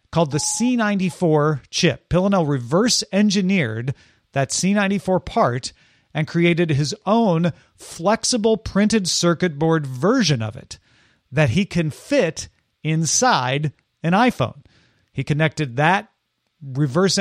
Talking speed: 110 wpm